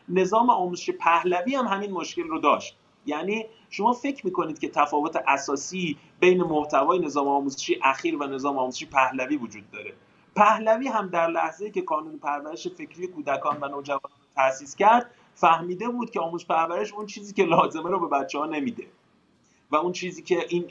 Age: 30-49